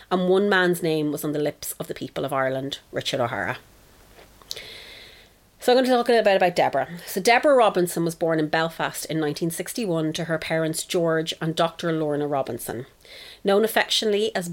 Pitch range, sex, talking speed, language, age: 160-195 Hz, female, 185 wpm, English, 30-49